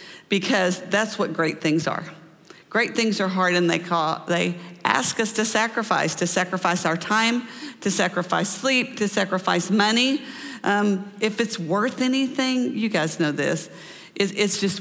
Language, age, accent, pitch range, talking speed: English, 50-69, American, 170-215 Hz, 160 wpm